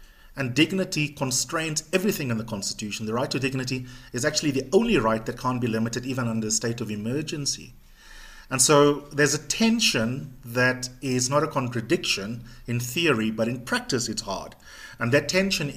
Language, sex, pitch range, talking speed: English, male, 120-150 Hz, 175 wpm